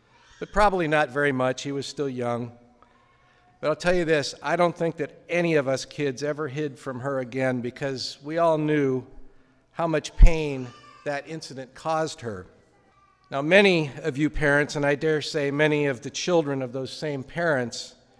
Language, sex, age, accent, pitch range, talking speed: English, male, 50-69, American, 130-155 Hz, 180 wpm